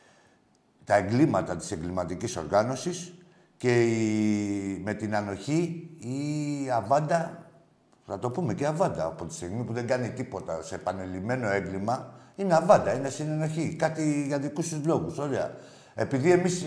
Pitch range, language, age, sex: 125-180 Hz, Greek, 50-69, male